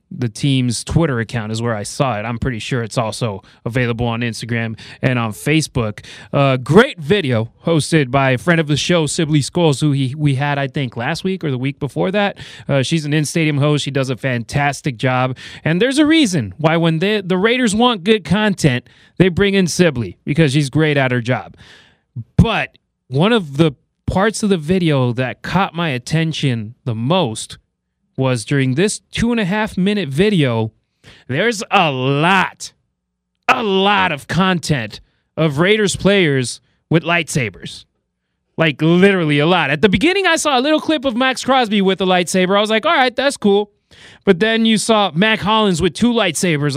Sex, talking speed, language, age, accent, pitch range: male, 180 wpm, English, 30-49, American, 130-190 Hz